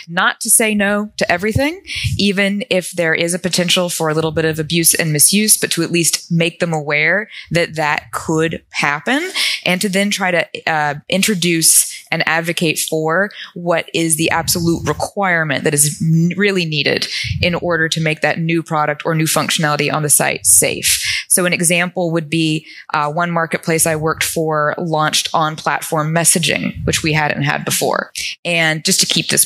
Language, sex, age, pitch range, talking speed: English, female, 20-39, 155-195 Hz, 180 wpm